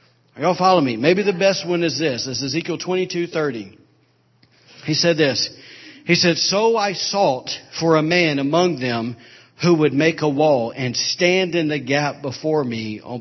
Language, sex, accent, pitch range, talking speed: English, male, American, 125-170 Hz, 180 wpm